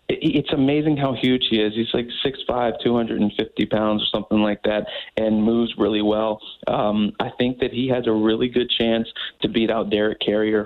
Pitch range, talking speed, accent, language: 105-120 Hz, 190 wpm, American, English